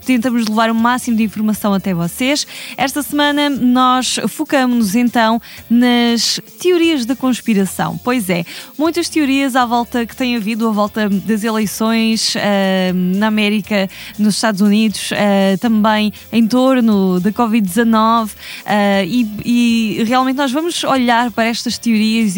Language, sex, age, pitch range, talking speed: Portuguese, female, 20-39, 210-255 Hz, 140 wpm